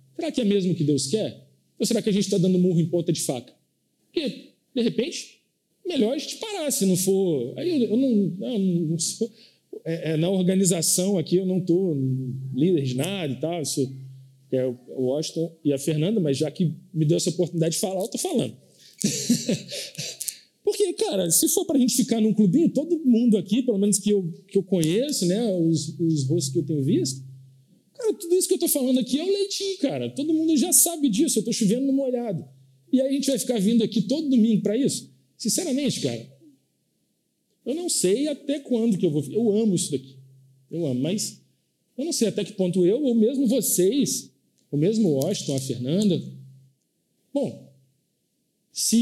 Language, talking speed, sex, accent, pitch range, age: Portuguese, 205 wpm, male, Brazilian, 160-235 Hz, 40-59